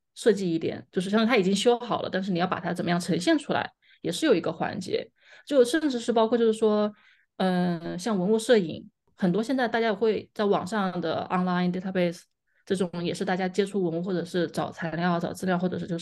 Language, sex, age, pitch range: Chinese, female, 20-39, 175-220 Hz